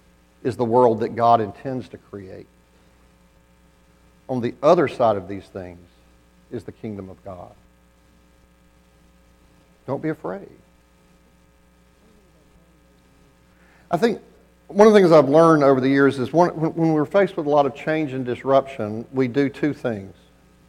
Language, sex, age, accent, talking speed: English, male, 50-69, American, 140 wpm